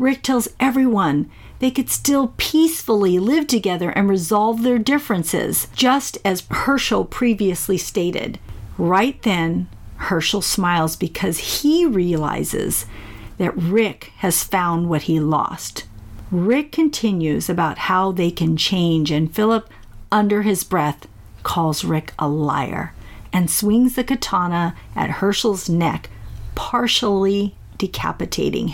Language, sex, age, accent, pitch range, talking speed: English, female, 50-69, American, 175-245 Hz, 120 wpm